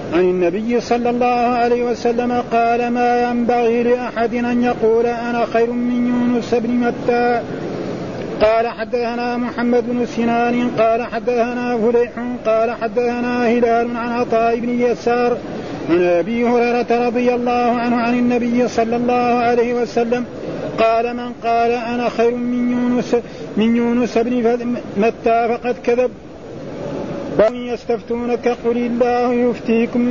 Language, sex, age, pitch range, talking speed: Arabic, male, 40-59, 235-245 Hz, 125 wpm